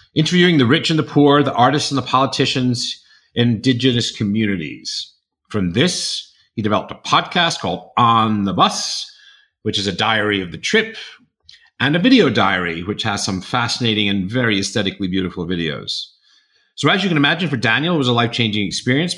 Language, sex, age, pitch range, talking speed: English, male, 50-69, 105-145 Hz, 175 wpm